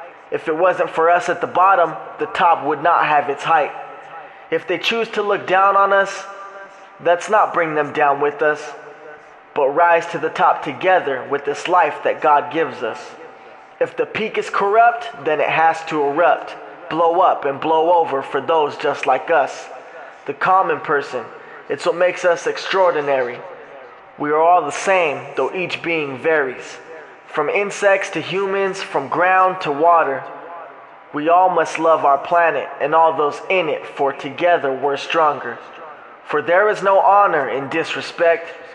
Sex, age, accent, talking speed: male, 20-39, American, 170 wpm